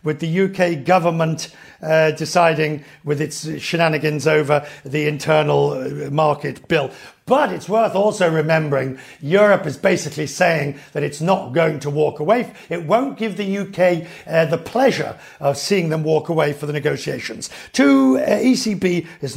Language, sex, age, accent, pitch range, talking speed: English, male, 50-69, British, 150-195 Hz, 155 wpm